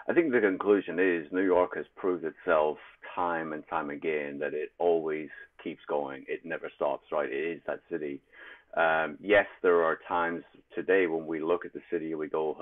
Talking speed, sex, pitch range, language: 205 wpm, male, 80-110 Hz, English